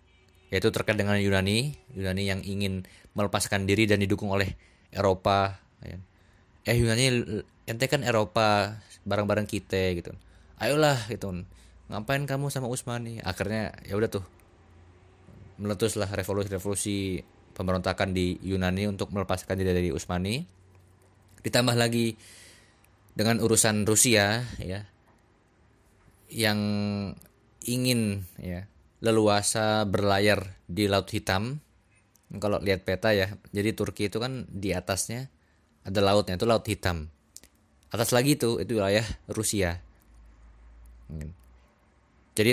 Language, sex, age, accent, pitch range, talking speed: Indonesian, male, 20-39, native, 95-110 Hz, 110 wpm